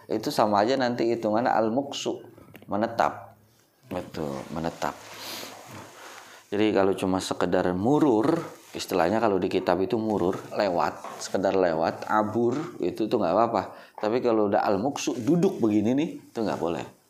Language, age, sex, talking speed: Indonesian, 30-49, male, 135 wpm